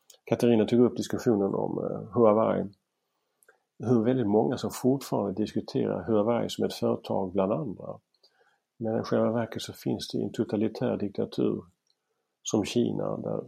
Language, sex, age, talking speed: Swedish, male, 50-69, 140 wpm